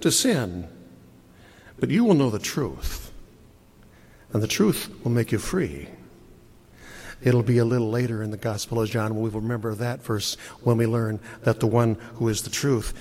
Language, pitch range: English, 110-130 Hz